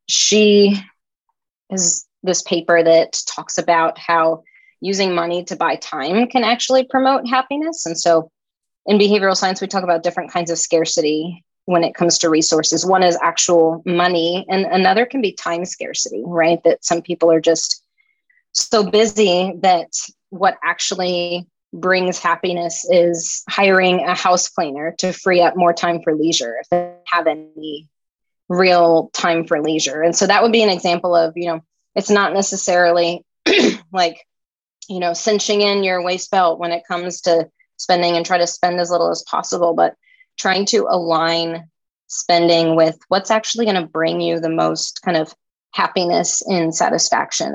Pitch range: 165-195 Hz